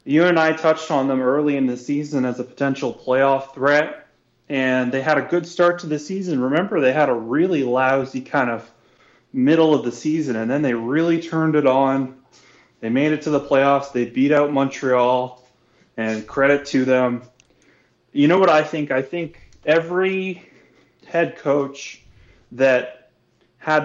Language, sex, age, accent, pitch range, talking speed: English, male, 20-39, American, 130-160 Hz, 175 wpm